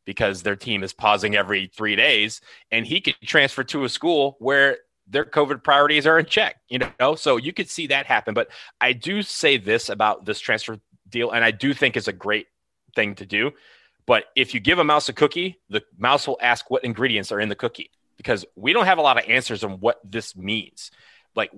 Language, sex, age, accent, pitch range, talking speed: English, male, 30-49, American, 110-145 Hz, 225 wpm